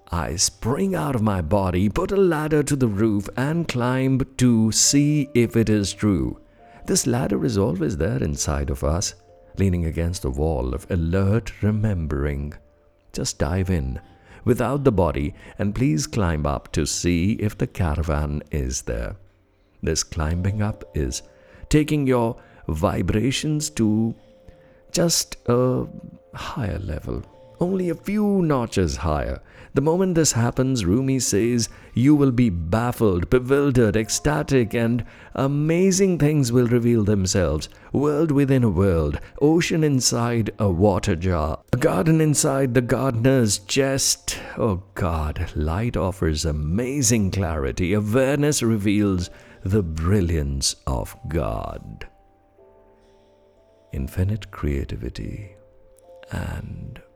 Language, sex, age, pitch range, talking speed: English, male, 60-79, 85-130 Hz, 125 wpm